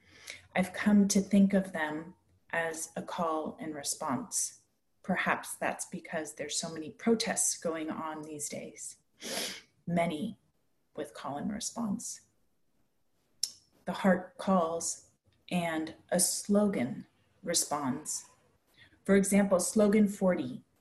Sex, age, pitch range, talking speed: female, 30-49, 170-205 Hz, 110 wpm